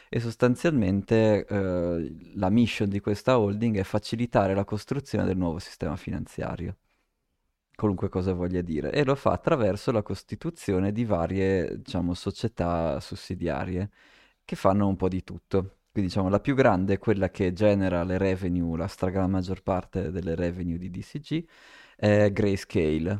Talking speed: 145 wpm